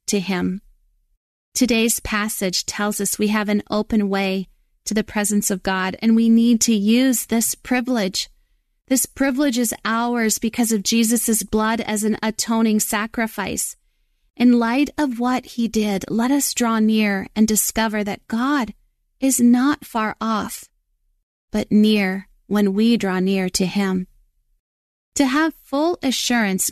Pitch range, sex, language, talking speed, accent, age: 200-240 Hz, female, English, 145 wpm, American, 30-49